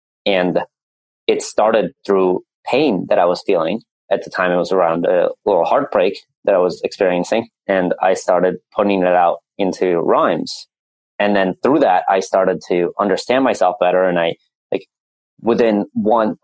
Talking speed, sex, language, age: 165 wpm, male, English, 20-39